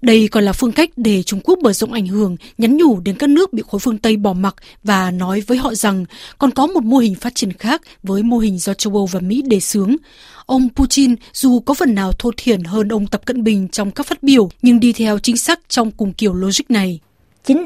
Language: Vietnamese